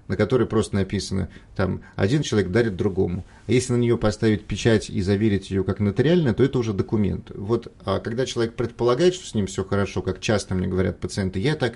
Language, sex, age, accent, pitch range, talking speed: Russian, male, 30-49, native, 95-120 Hz, 210 wpm